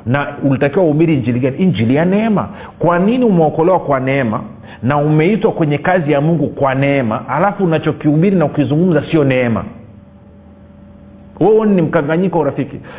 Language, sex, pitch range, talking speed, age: Swahili, male, 125-175 Hz, 140 wpm, 40-59